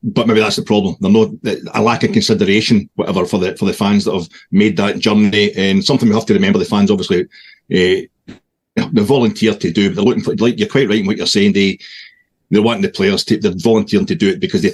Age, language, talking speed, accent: 40-59, English, 250 wpm, British